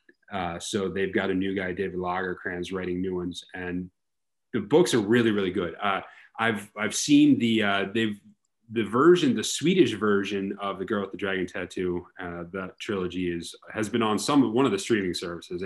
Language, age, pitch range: English, 30-49, 90-105 Hz